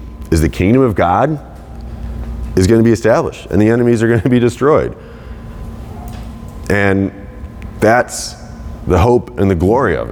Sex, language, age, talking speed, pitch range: male, English, 30-49, 155 wpm, 90-115 Hz